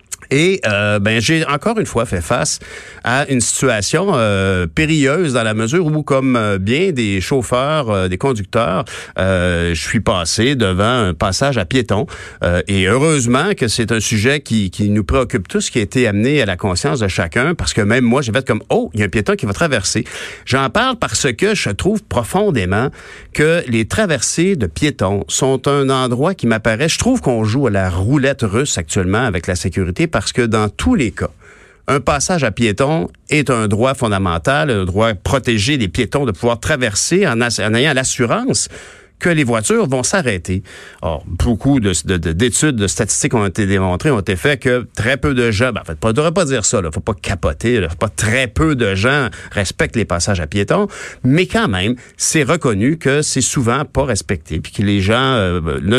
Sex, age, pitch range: male, 50-69, 100-140 Hz